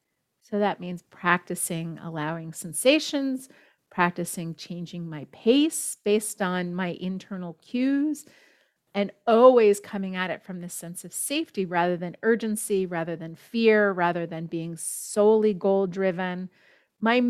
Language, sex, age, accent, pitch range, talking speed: English, female, 40-59, American, 175-225 Hz, 130 wpm